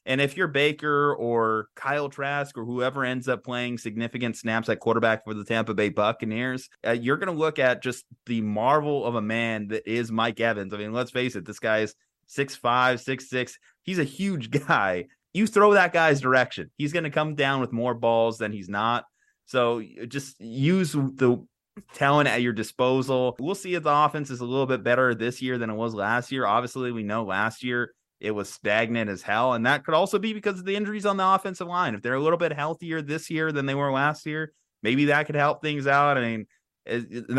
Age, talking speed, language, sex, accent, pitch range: 20-39, 215 wpm, English, male, American, 115-145 Hz